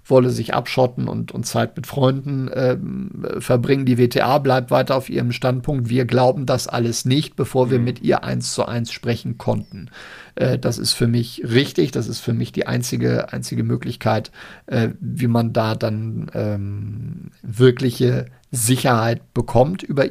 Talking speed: 165 wpm